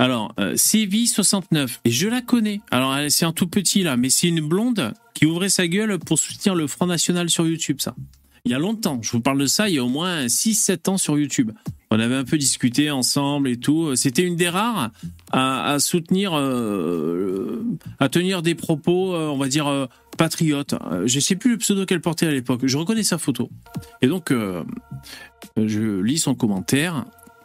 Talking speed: 210 wpm